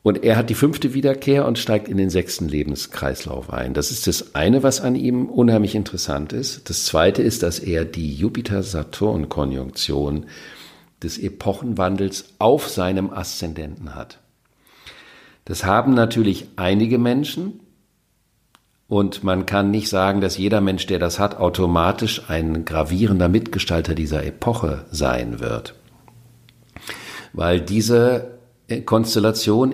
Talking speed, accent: 125 wpm, German